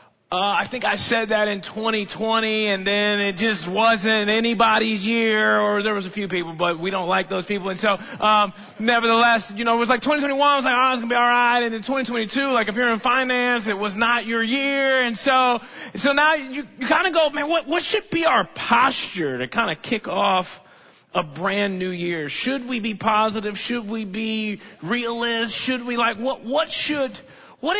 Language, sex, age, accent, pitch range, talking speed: English, male, 30-49, American, 195-255 Hz, 215 wpm